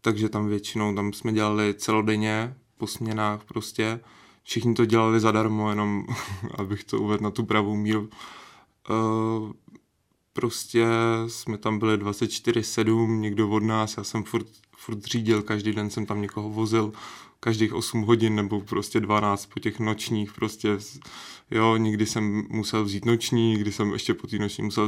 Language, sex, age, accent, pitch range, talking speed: Czech, male, 20-39, native, 105-115 Hz, 155 wpm